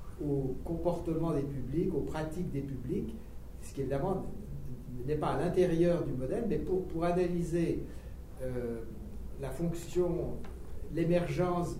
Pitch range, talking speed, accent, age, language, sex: 135-175 Hz, 125 wpm, French, 60-79, French, male